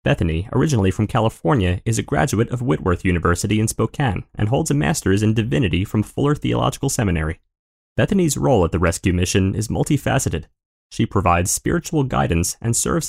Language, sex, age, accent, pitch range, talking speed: English, male, 30-49, American, 90-120 Hz, 165 wpm